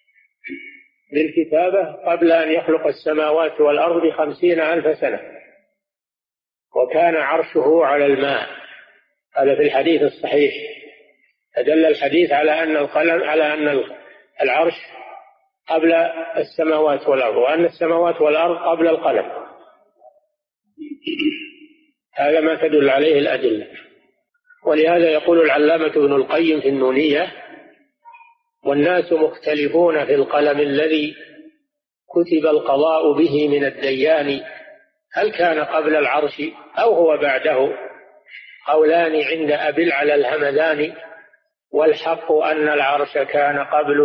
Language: Arabic